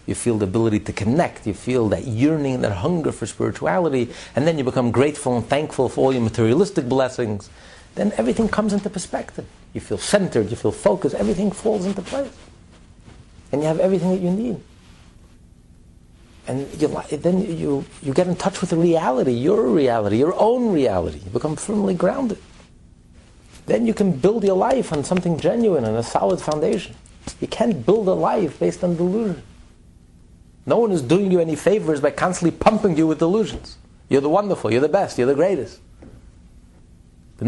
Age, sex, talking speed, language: 50-69, male, 180 wpm, English